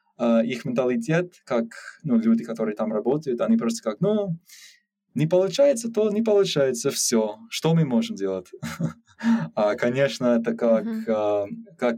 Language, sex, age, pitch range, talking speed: Russian, male, 20-39, 115-175 Hz, 135 wpm